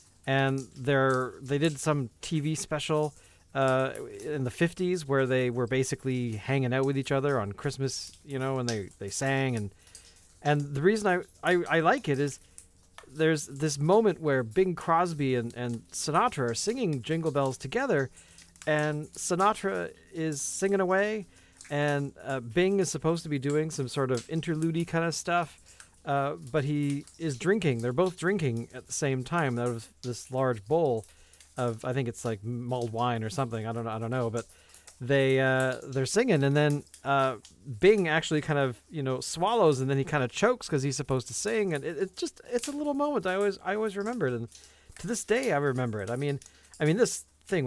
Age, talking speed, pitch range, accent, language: 40-59, 195 wpm, 125-160 Hz, American, English